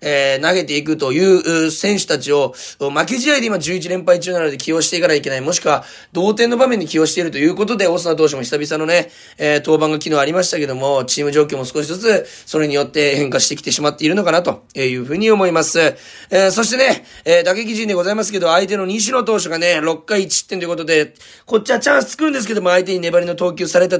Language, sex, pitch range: Japanese, male, 150-195 Hz